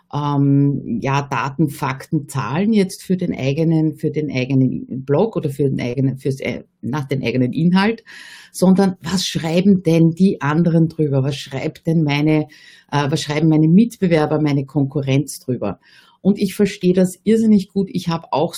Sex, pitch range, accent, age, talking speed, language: female, 150-190 Hz, Austrian, 50-69, 160 wpm, German